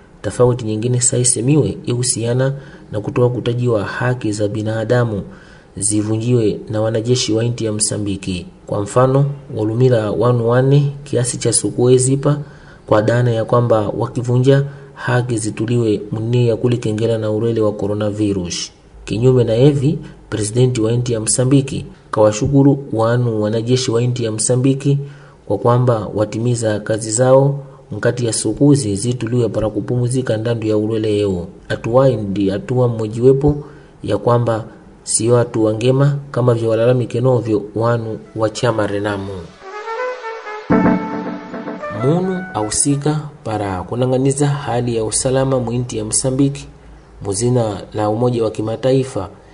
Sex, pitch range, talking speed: male, 110-130 Hz, 115 wpm